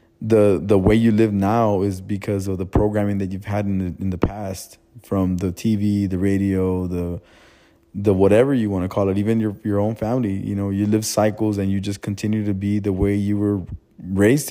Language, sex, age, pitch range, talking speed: English, male, 20-39, 95-105 Hz, 220 wpm